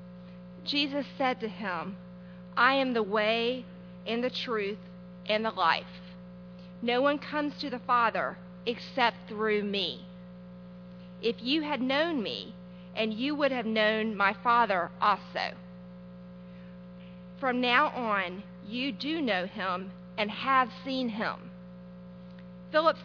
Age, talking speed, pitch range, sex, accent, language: 40-59, 125 wpm, 150-245 Hz, female, American, English